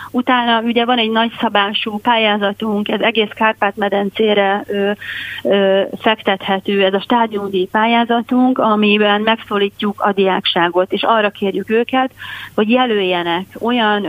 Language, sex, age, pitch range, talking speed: Hungarian, female, 30-49, 195-225 Hz, 115 wpm